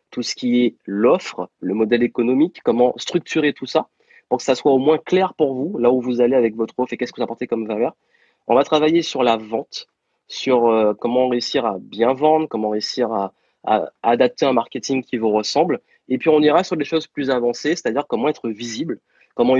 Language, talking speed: French, 215 wpm